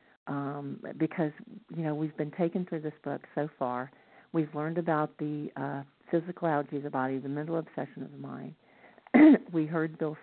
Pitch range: 140-165 Hz